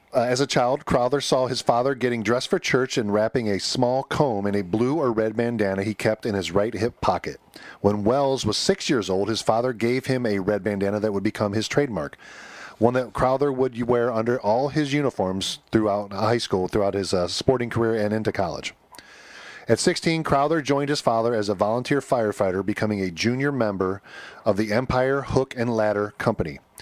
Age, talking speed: 40-59, 200 wpm